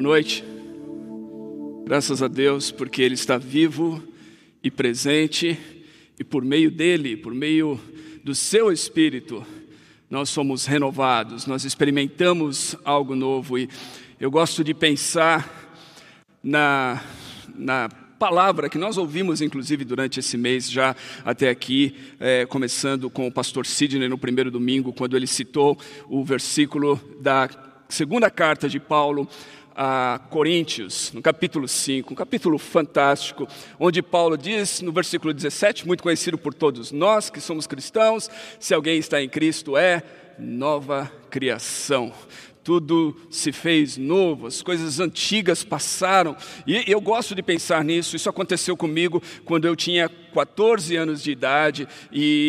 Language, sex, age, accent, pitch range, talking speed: Portuguese, male, 50-69, Brazilian, 140-180 Hz, 135 wpm